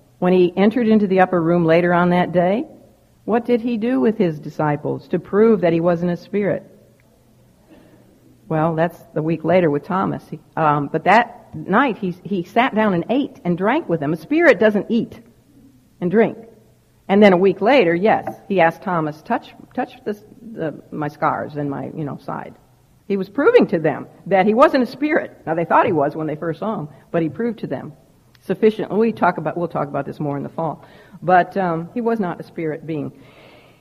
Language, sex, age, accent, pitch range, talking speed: English, female, 60-79, American, 165-230 Hz, 210 wpm